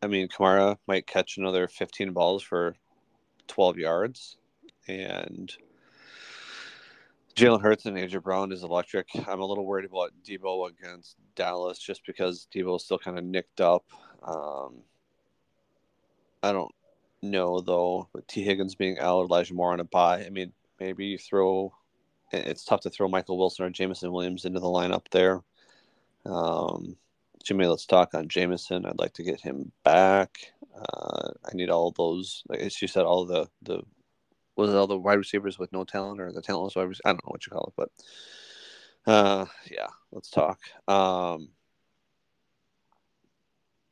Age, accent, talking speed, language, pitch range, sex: 30-49, American, 165 wpm, English, 90-95 Hz, male